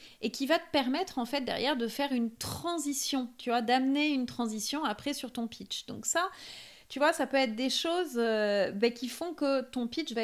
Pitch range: 210-260 Hz